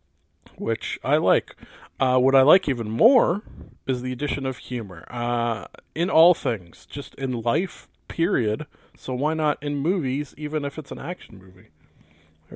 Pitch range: 115-145 Hz